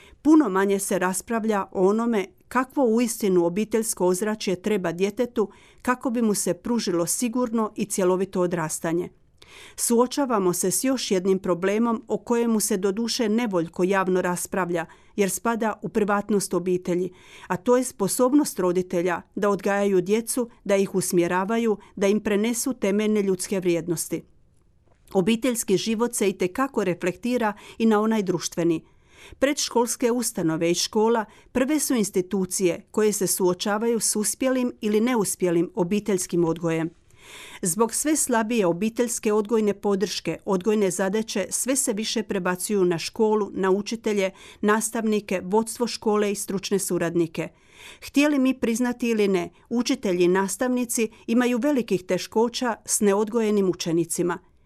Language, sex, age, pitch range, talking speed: Croatian, female, 40-59, 185-230 Hz, 130 wpm